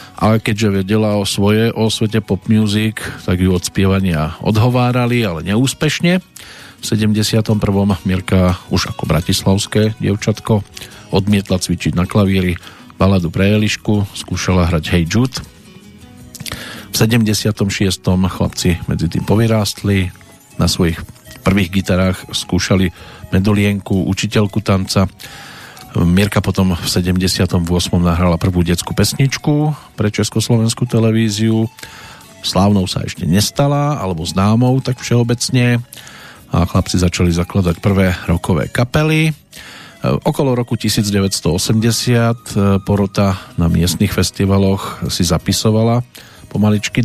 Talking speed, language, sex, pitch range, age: 105 wpm, Slovak, male, 95-115 Hz, 40-59